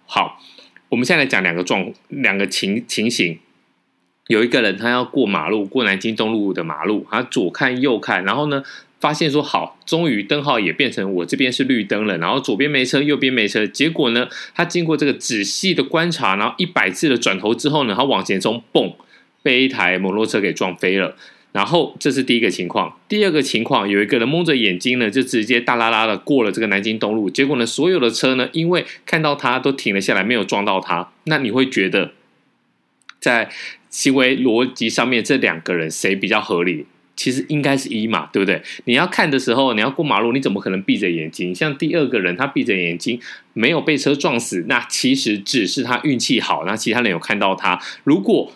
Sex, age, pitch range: male, 20-39, 100-145 Hz